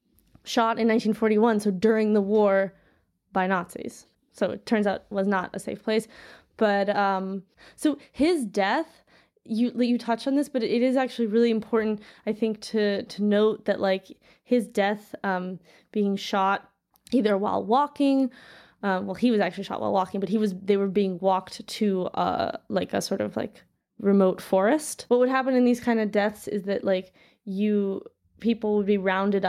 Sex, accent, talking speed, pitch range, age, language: female, American, 185 wpm, 195-230 Hz, 20-39, English